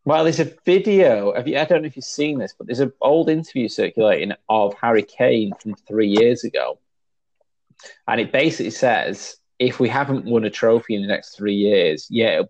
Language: English